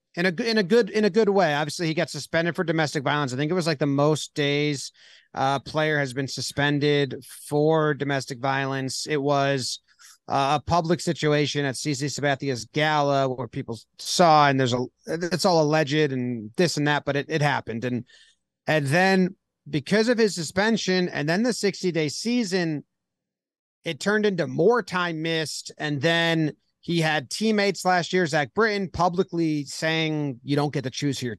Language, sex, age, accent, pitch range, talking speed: English, male, 30-49, American, 135-170 Hz, 185 wpm